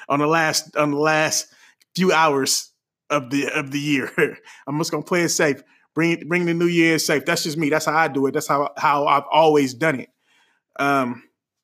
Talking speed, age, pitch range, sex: 215 wpm, 30-49, 150-185 Hz, male